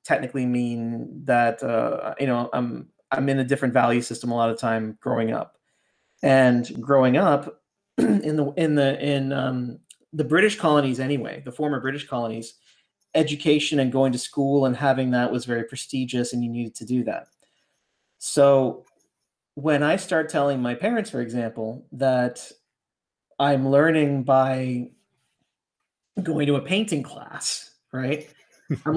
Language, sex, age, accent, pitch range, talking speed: English, male, 30-49, American, 125-150 Hz, 155 wpm